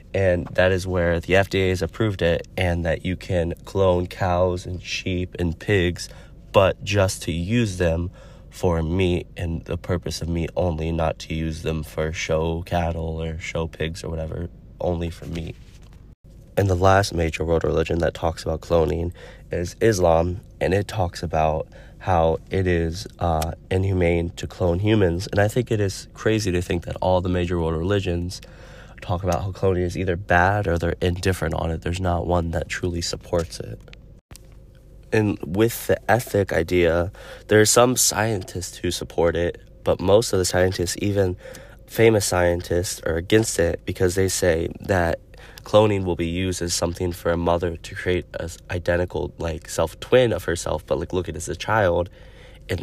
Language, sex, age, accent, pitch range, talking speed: English, male, 30-49, American, 85-95 Hz, 180 wpm